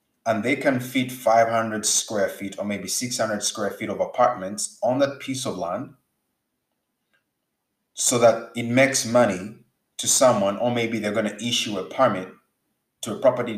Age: 30-49